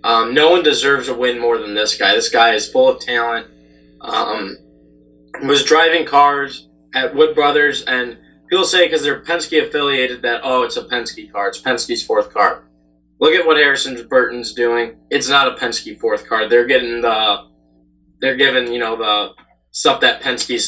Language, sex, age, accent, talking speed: English, male, 20-39, American, 180 wpm